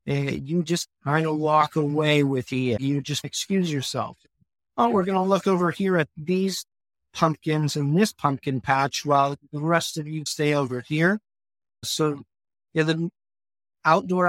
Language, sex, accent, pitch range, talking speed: English, male, American, 145-170 Hz, 165 wpm